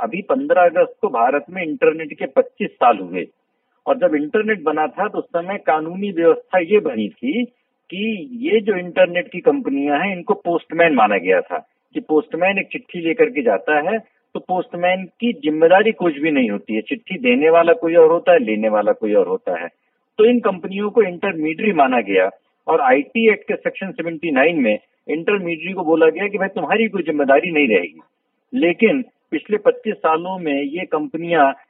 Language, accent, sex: Hindi, native, male